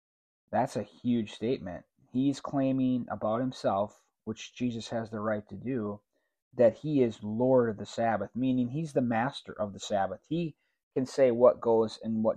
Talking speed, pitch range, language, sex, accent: 175 wpm, 110-135 Hz, English, male, American